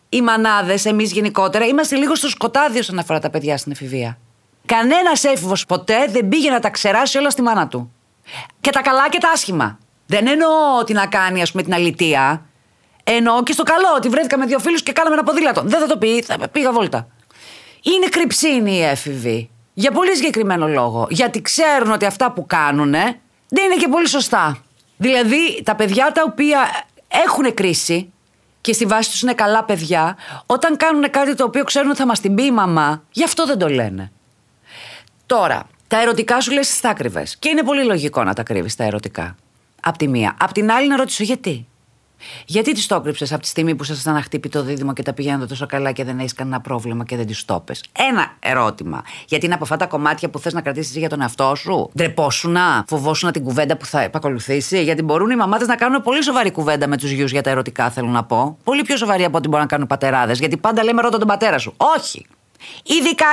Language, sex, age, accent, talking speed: Greek, female, 30-49, native, 210 wpm